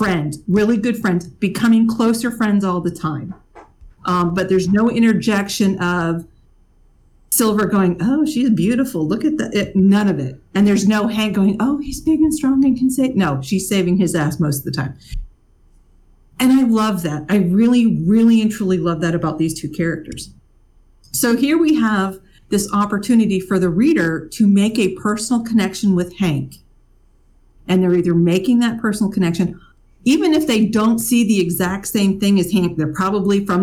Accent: American